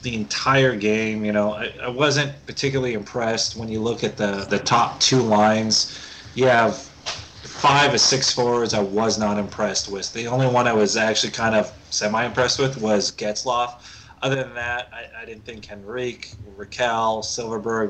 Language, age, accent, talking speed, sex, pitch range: English, 30-49, American, 180 wpm, male, 105-125 Hz